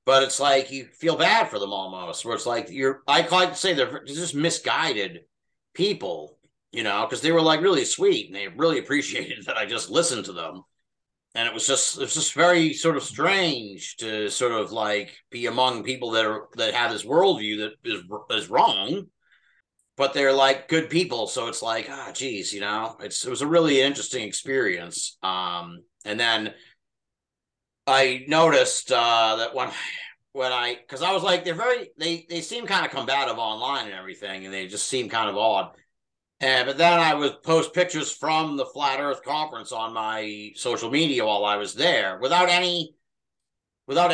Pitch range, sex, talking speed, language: 115-165 Hz, male, 190 wpm, English